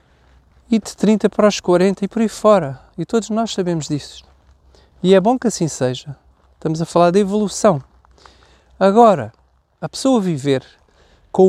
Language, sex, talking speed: Portuguese, male, 160 wpm